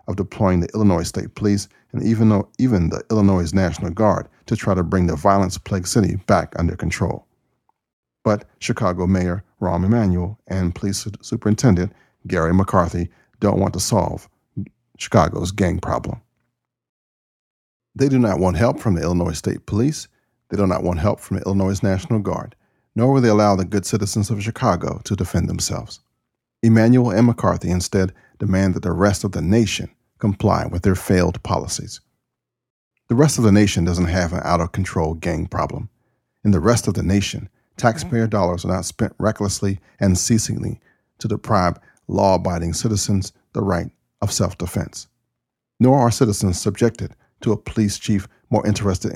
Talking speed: 160 wpm